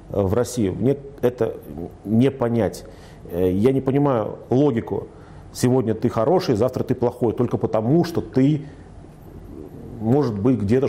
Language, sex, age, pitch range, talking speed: Russian, male, 40-59, 110-130 Hz, 125 wpm